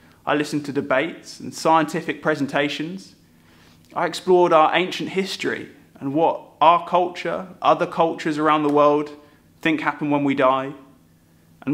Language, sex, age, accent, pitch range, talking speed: English, male, 20-39, British, 135-180 Hz, 140 wpm